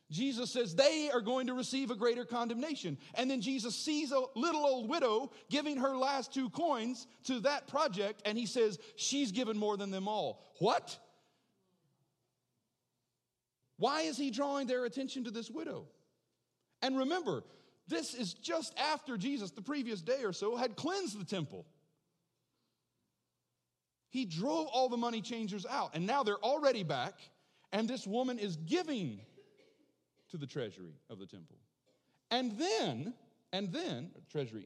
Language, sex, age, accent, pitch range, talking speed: English, male, 40-59, American, 175-265 Hz, 155 wpm